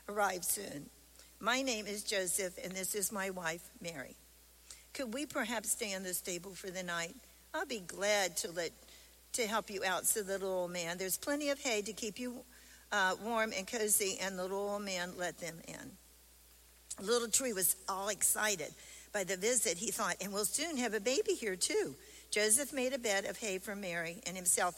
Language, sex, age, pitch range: English, female, 60-79, 180-220 Hz